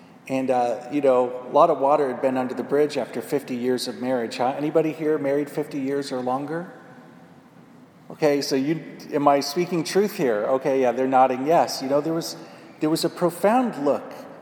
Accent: American